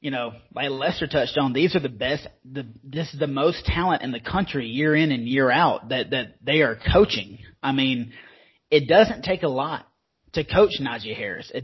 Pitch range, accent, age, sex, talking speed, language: 135-165 Hz, American, 30-49, male, 215 wpm, English